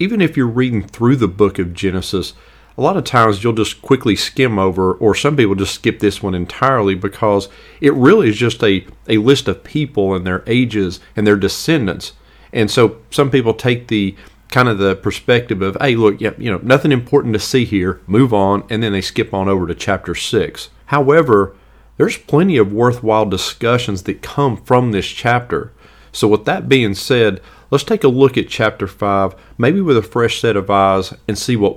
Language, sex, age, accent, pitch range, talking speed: English, male, 40-59, American, 95-120 Hz, 200 wpm